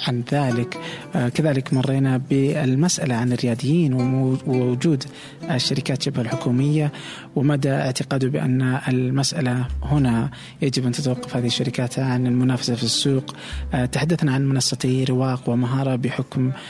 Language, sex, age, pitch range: Arabic, male, 20-39, 120-145 Hz